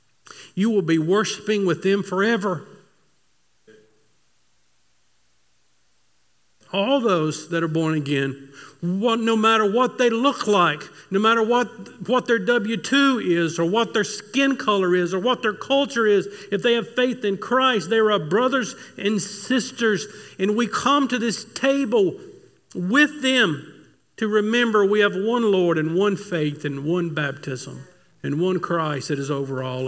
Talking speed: 155 wpm